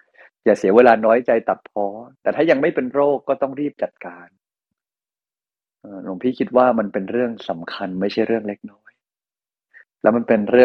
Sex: male